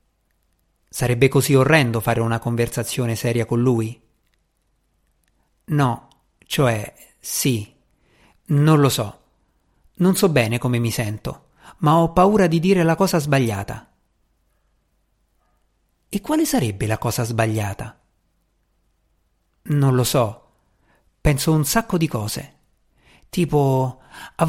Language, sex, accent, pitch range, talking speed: Italian, male, native, 110-165 Hz, 110 wpm